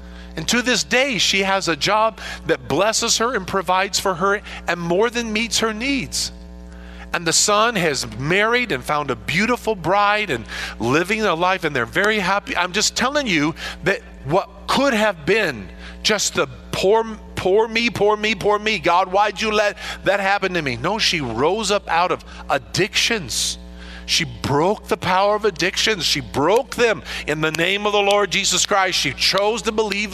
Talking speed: 185 wpm